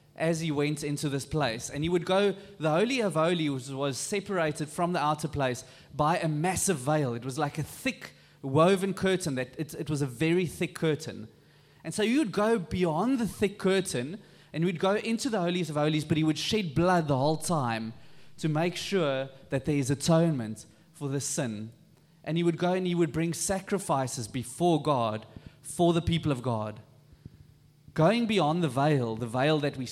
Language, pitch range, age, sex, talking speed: English, 140-175 Hz, 20-39, male, 200 wpm